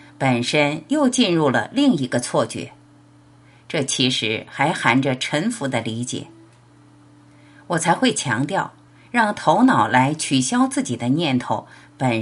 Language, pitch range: Chinese, 130-175 Hz